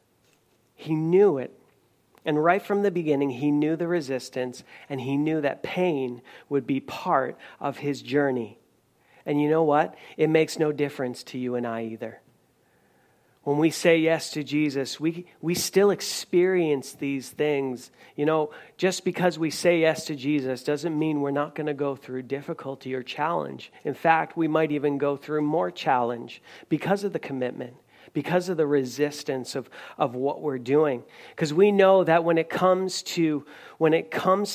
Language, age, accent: English, 40-59, American